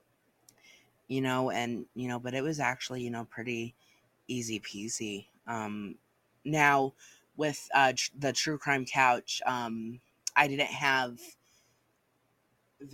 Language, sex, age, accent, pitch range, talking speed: English, female, 20-39, American, 115-135 Hz, 120 wpm